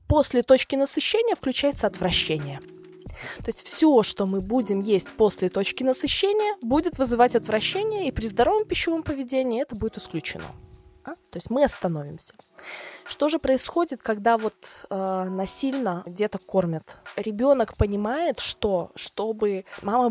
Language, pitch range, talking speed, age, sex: Russian, 190-265 Hz, 130 wpm, 20-39, female